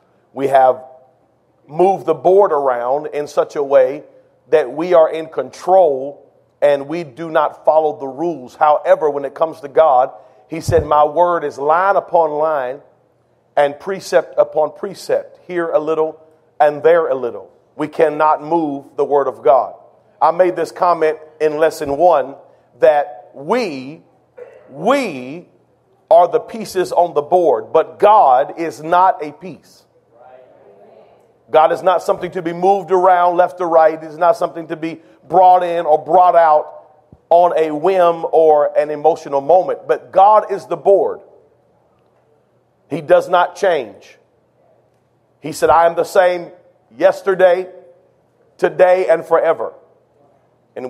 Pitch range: 155-190 Hz